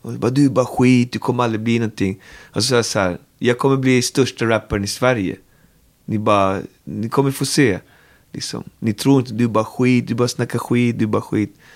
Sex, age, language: male, 30-49, Swedish